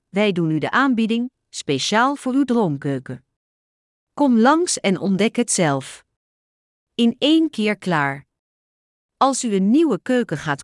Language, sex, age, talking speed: Dutch, female, 40-59, 140 wpm